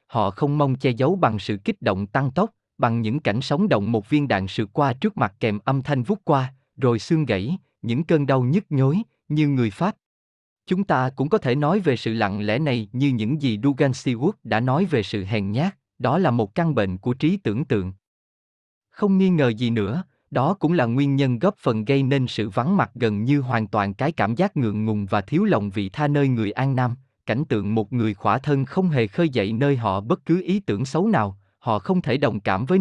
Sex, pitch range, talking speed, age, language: male, 110-155 Hz, 235 wpm, 20-39, Vietnamese